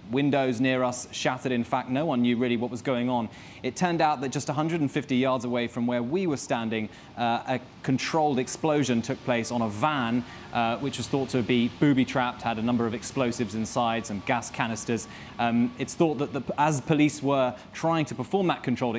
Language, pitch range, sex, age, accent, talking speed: English, 120-145 Hz, male, 20-39, British, 200 wpm